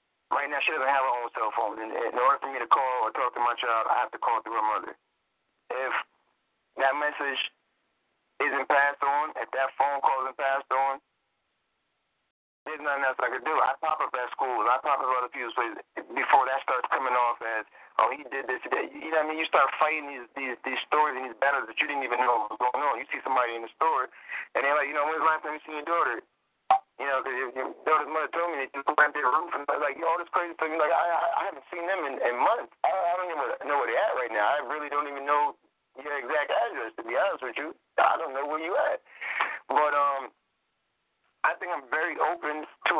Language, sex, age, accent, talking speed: English, male, 30-49, American, 255 wpm